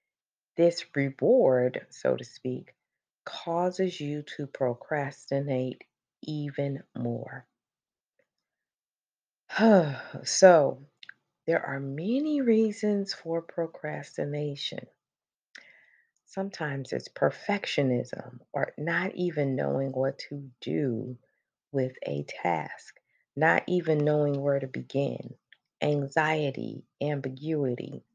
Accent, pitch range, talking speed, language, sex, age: American, 135-170 Hz, 85 wpm, English, female, 40-59